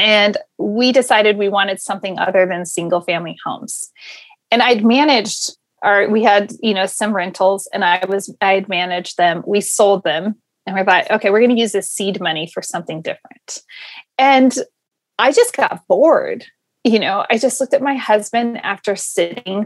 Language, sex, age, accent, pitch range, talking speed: English, female, 30-49, American, 195-255 Hz, 180 wpm